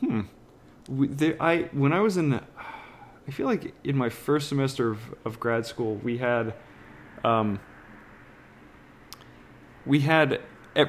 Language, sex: English, male